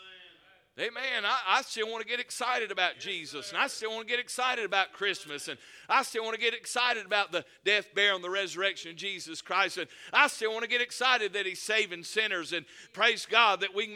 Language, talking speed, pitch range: English, 230 wpm, 155-220 Hz